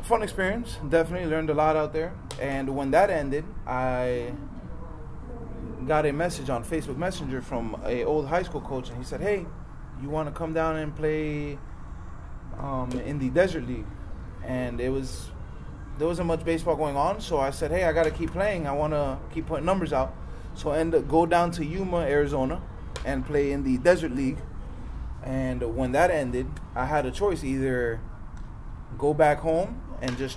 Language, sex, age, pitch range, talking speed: English, male, 20-39, 125-160 Hz, 185 wpm